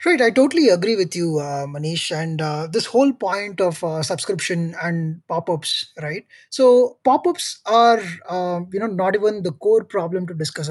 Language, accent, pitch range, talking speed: English, Indian, 170-220 Hz, 180 wpm